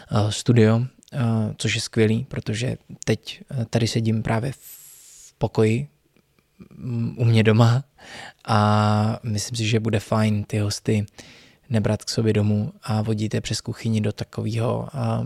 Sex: male